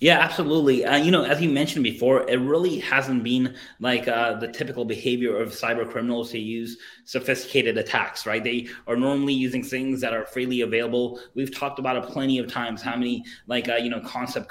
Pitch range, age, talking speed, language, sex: 115-135 Hz, 20-39, 205 wpm, English, male